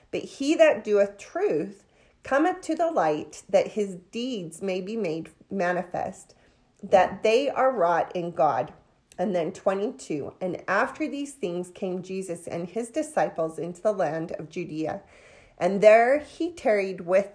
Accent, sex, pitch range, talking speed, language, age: American, female, 185-255 Hz, 150 wpm, English, 40-59